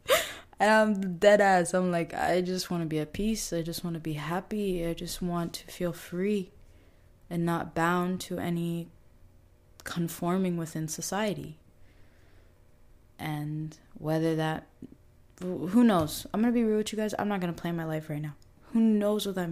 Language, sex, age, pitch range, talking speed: English, female, 20-39, 150-185 Hz, 180 wpm